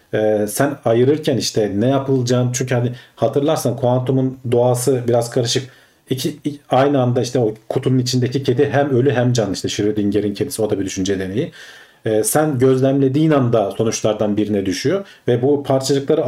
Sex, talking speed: male, 160 wpm